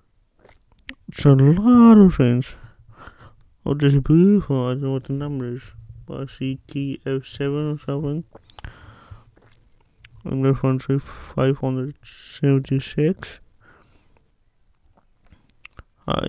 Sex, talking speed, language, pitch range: male, 115 wpm, English, 120-150 Hz